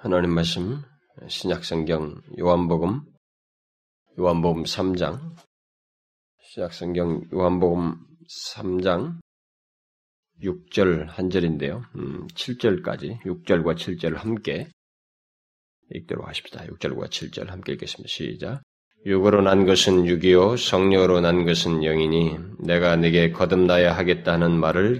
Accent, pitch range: native, 80-95 Hz